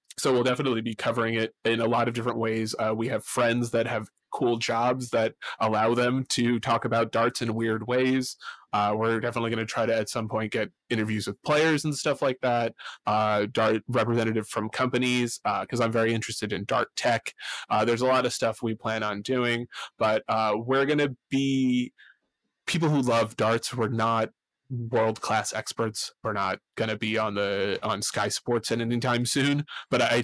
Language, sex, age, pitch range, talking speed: English, male, 20-39, 110-130 Hz, 205 wpm